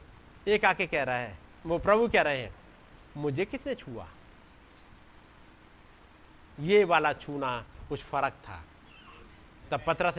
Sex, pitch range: male, 140-210 Hz